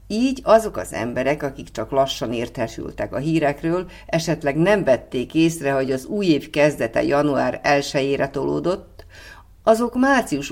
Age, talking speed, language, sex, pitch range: 50-69, 145 wpm, Hungarian, female, 140-170 Hz